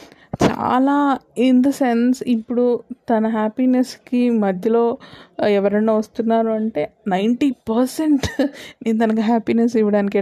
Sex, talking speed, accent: female, 100 wpm, native